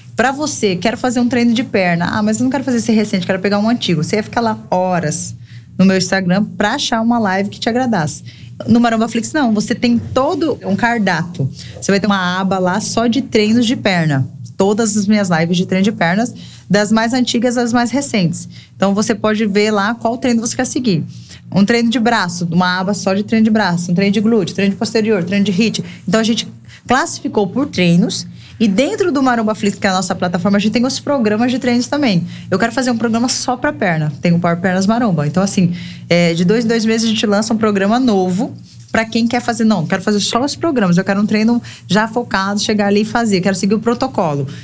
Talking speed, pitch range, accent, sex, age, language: 235 wpm, 180-230 Hz, Brazilian, female, 20-39, Portuguese